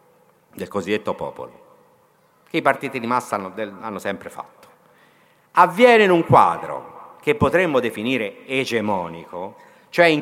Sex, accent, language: male, native, Italian